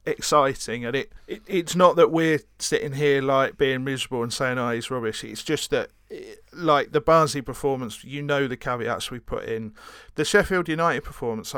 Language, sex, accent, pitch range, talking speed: English, male, British, 115-140 Hz, 185 wpm